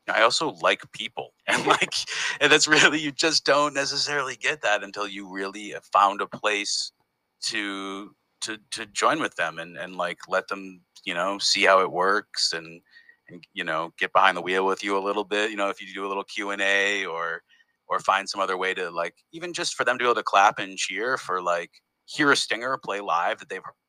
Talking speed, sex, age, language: 220 wpm, male, 40-59, English